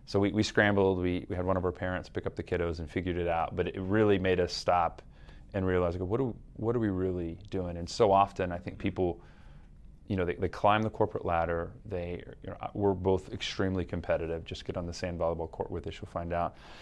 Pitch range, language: 85-100 Hz, English